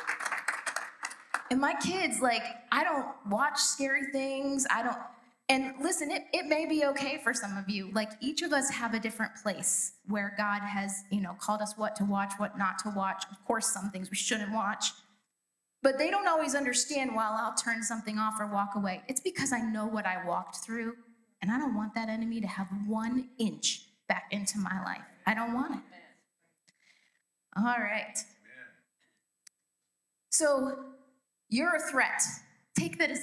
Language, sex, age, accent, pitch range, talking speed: English, female, 20-39, American, 210-270 Hz, 180 wpm